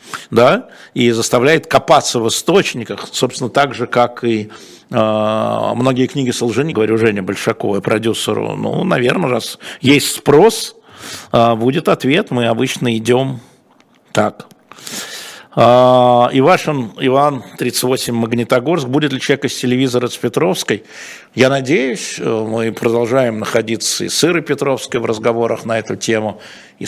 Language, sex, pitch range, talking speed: Russian, male, 110-130 Hz, 130 wpm